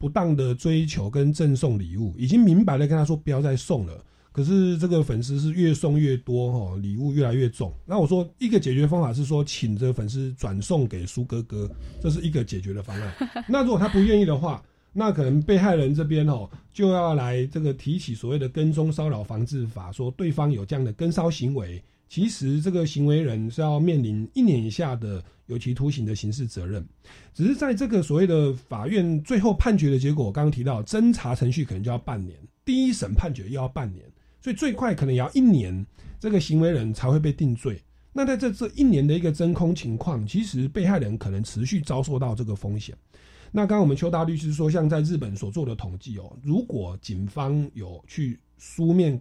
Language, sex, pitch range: Chinese, male, 110-170 Hz